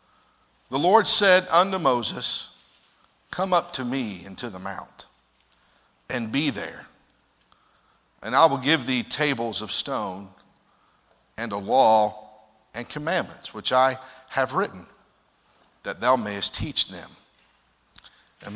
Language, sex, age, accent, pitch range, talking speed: English, male, 50-69, American, 110-145 Hz, 125 wpm